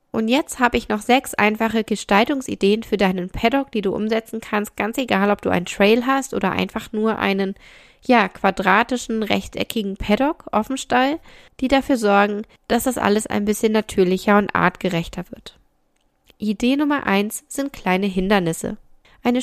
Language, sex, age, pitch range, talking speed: German, female, 10-29, 195-235 Hz, 155 wpm